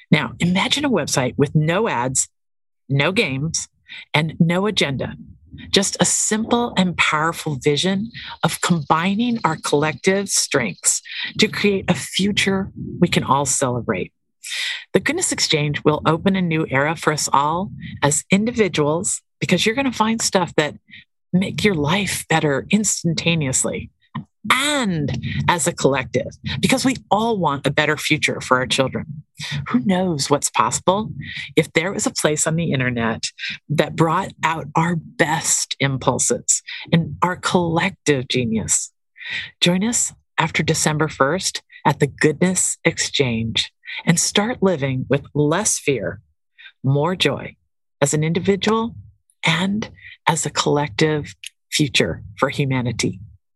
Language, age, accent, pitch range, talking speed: English, 50-69, American, 140-190 Hz, 135 wpm